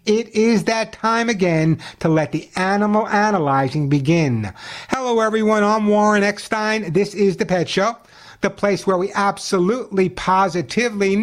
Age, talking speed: 60-79, 145 wpm